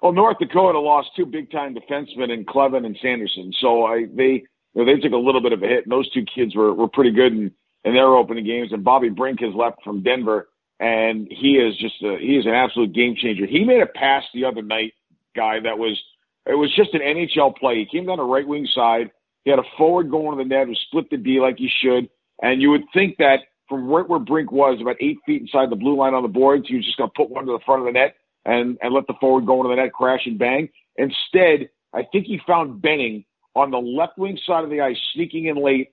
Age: 50-69